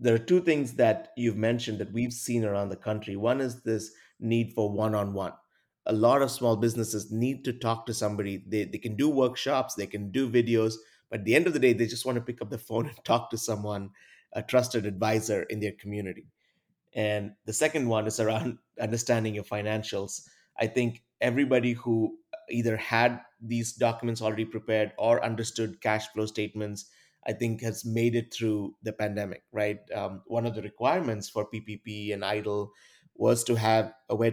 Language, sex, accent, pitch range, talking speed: English, male, Indian, 105-120 Hz, 190 wpm